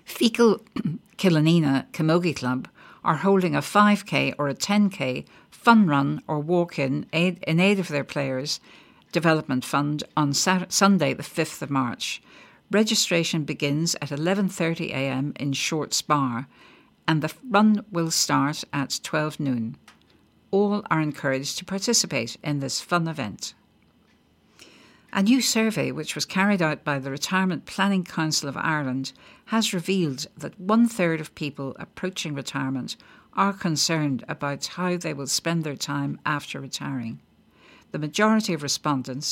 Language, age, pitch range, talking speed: English, 60-79, 140-190 Hz, 140 wpm